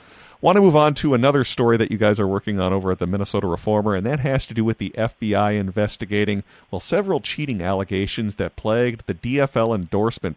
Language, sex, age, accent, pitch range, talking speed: English, male, 40-59, American, 95-120 Hz, 210 wpm